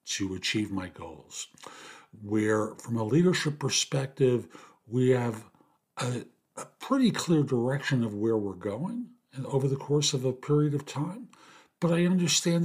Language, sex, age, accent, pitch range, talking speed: English, male, 50-69, American, 110-140 Hz, 150 wpm